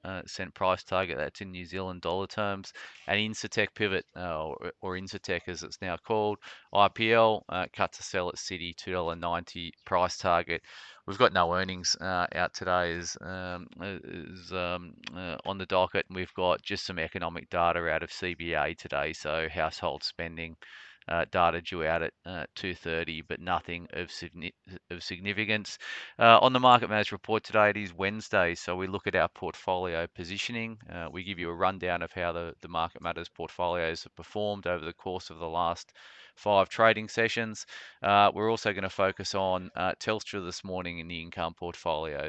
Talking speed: 185 wpm